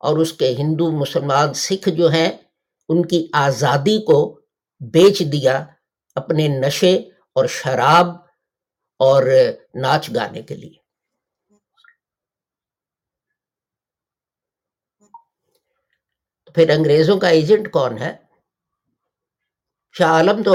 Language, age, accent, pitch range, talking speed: English, 50-69, Indian, 135-185 Hz, 85 wpm